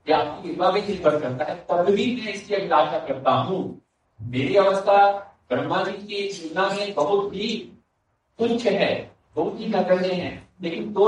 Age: 50-69